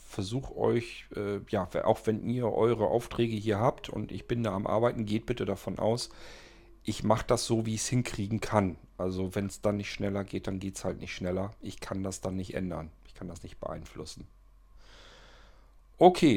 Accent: German